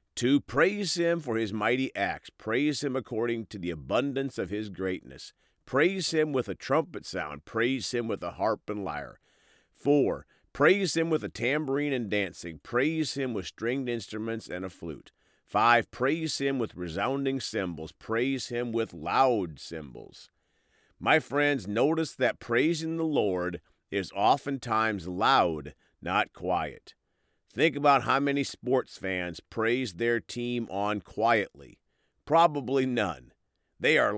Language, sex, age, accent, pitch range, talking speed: English, male, 50-69, American, 95-140 Hz, 145 wpm